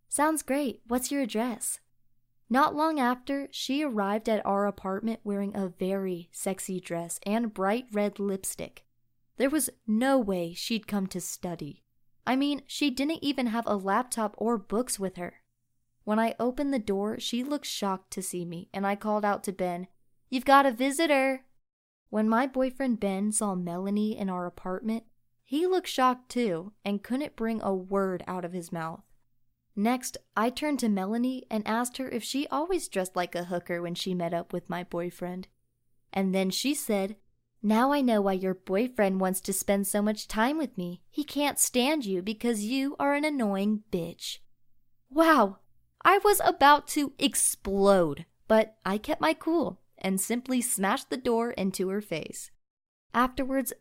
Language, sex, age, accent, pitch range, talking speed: English, female, 20-39, American, 185-250 Hz, 175 wpm